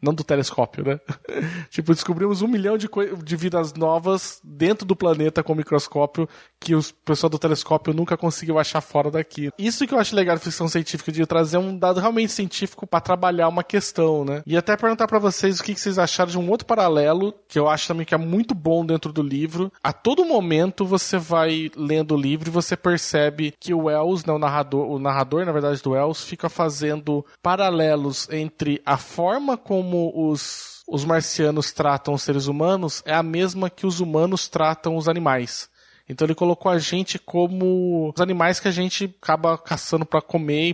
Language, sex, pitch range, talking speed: Portuguese, male, 150-180 Hz, 200 wpm